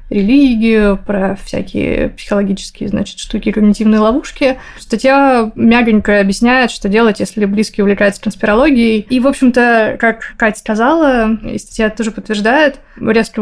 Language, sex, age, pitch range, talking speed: Russian, female, 20-39, 205-240 Hz, 125 wpm